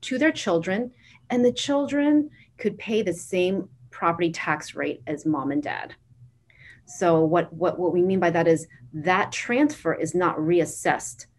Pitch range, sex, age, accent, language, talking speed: 155-205 Hz, female, 30-49, American, English, 165 wpm